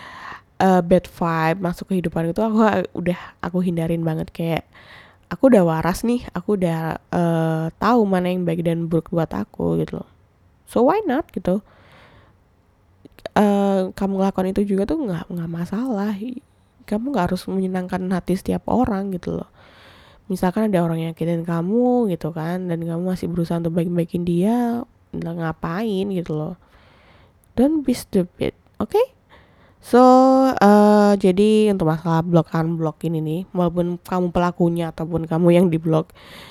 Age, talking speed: 10-29, 145 wpm